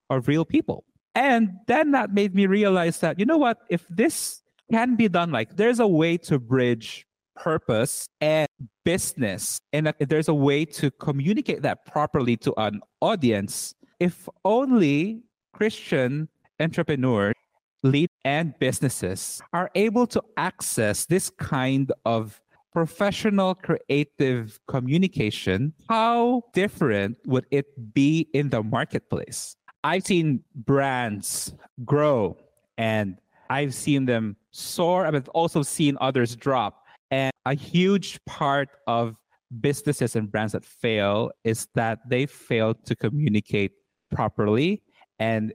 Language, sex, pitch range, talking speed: English, male, 115-165 Hz, 125 wpm